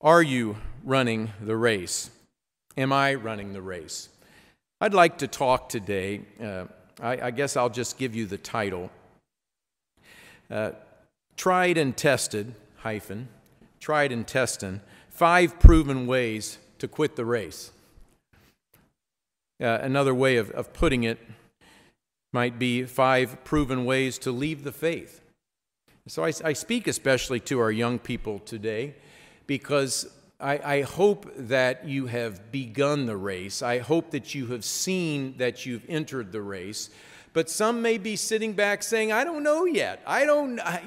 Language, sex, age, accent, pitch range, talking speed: English, male, 50-69, American, 120-165 Hz, 150 wpm